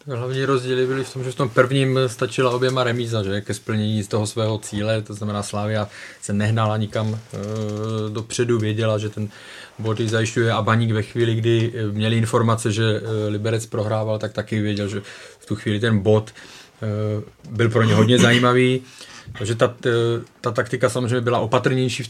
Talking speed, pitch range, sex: 175 wpm, 105-120 Hz, male